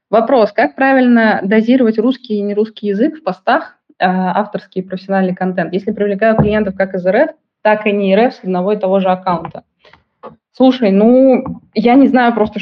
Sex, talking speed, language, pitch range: female, 175 wpm, Russian, 185-220 Hz